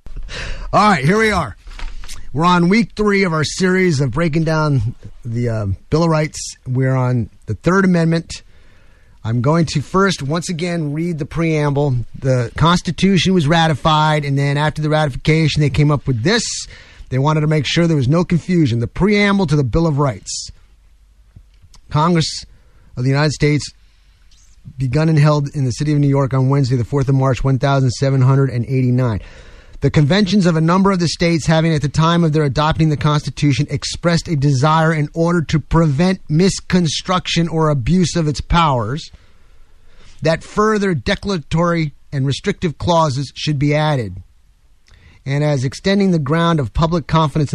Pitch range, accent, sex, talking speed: 125-165 Hz, American, male, 165 wpm